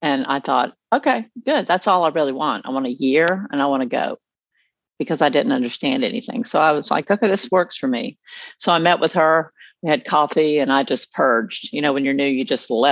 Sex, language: female, English